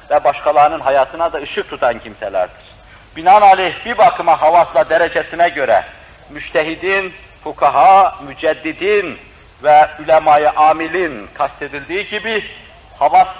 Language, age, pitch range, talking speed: Turkish, 60-79, 155-195 Hz, 100 wpm